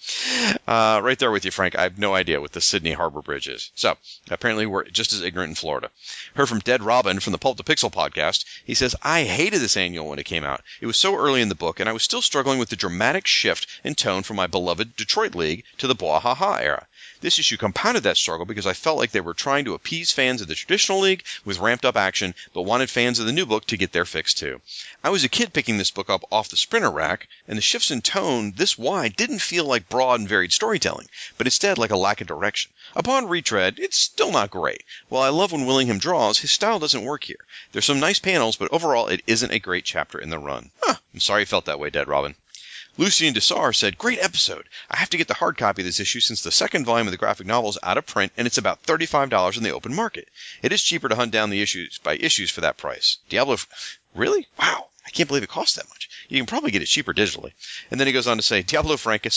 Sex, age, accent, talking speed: male, 40-59, American, 260 wpm